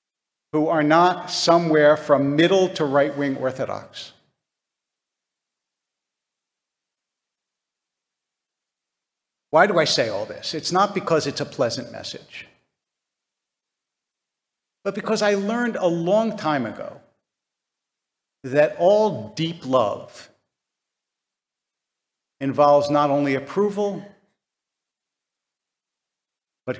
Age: 50-69